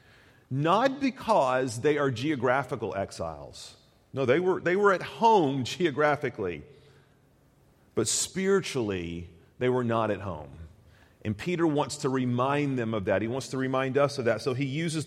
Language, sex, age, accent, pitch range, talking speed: English, male, 40-59, American, 120-150 Hz, 155 wpm